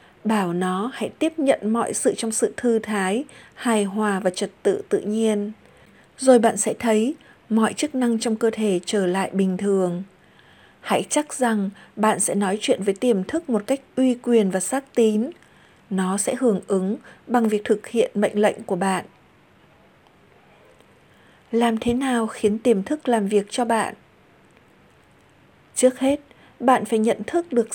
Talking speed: 170 wpm